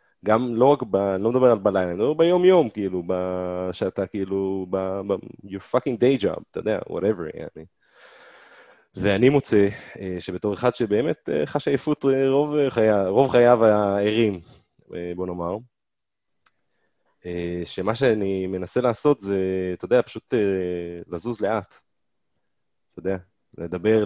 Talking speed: 125 wpm